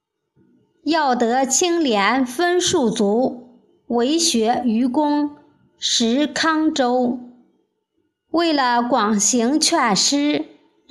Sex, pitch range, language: male, 230-310 Hz, Chinese